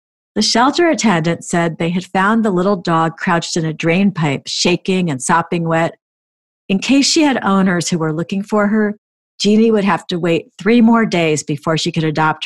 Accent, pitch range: American, 165-215 Hz